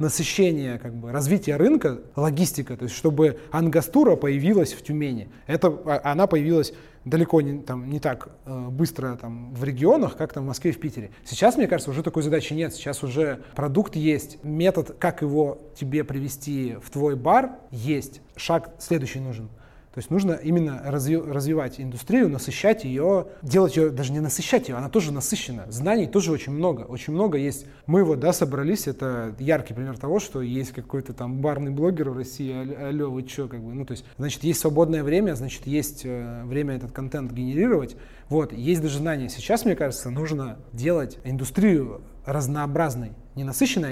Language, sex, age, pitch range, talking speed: Russian, male, 20-39, 130-165 Hz, 170 wpm